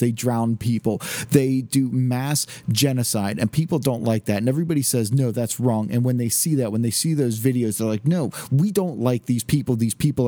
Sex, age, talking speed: male, 40-59, 220 wpm